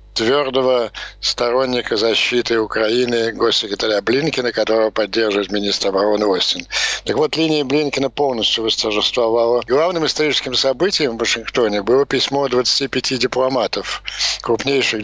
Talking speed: 110 wpm